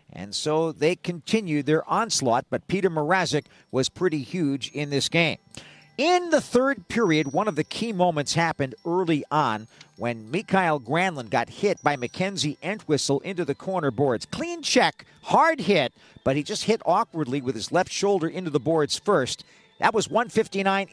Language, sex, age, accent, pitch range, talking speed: English, male, 50-69, American, 145-195 Hz, 170 wpm